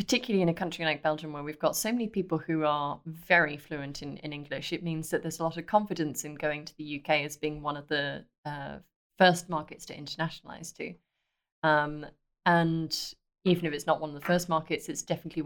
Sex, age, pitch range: female, 30-49, 150-175 Hz